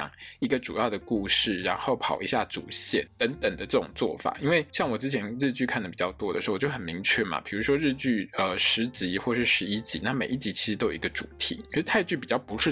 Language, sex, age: Chinese, male, 20-39